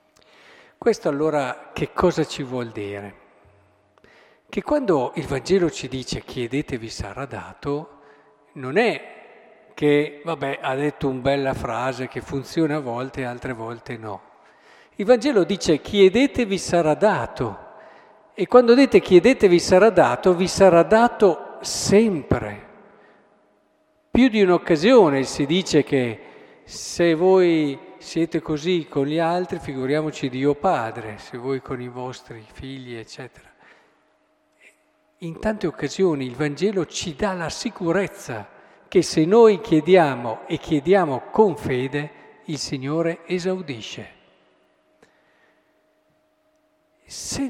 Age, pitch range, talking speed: 50-69, 130-190 Hz, 115 wpm